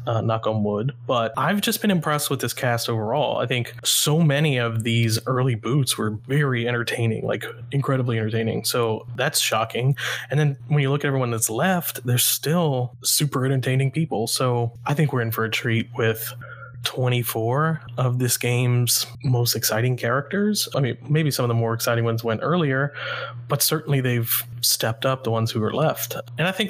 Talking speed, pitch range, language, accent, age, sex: 190 wpm, 115-140 Hz, English, American, 20-39, male